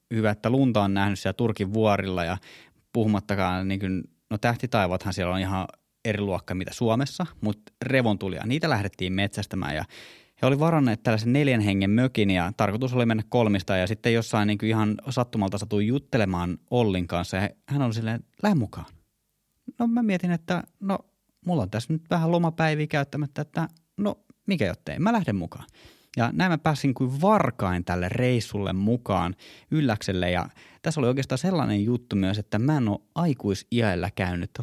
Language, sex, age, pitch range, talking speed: Finnish, male, 20-39, 95-130 Hz, 175 wpm